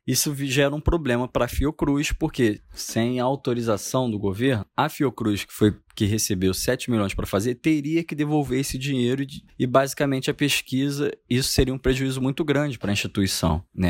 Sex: male